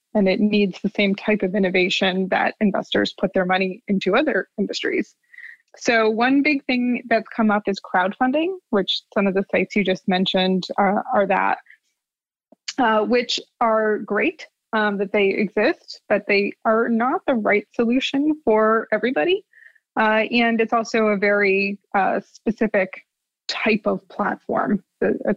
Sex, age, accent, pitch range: female, 20-39, American, 200-235 Hz